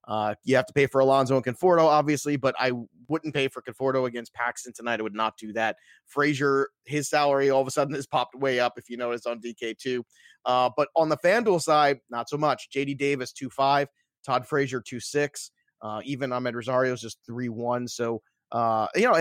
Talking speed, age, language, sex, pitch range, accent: 220 wpm, 30-49, English, male, 120-150 Hz, American